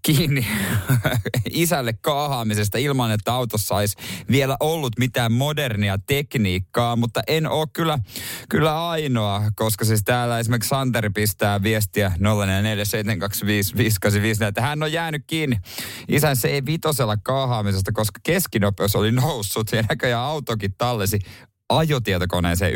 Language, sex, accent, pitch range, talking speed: Finnish, male, native, 100-125 Hz, 115 wpm